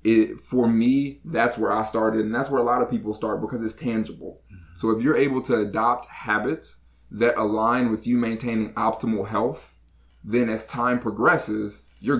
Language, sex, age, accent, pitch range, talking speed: English, male, 20-39, American, 105-120 Hz, 180 wpm